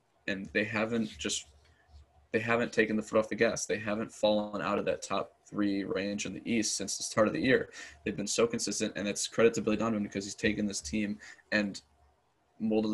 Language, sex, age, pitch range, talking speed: English, male, 20-39, 95-110 Hz, 220 wpm